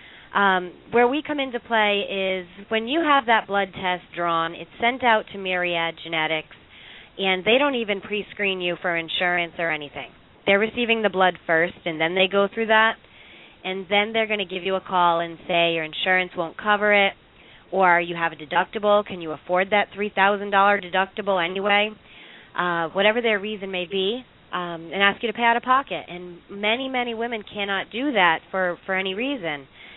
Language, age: English, 30-49